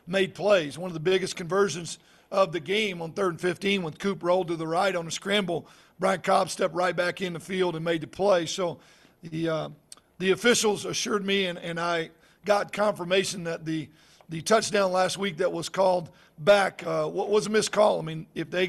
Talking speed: 215 wpm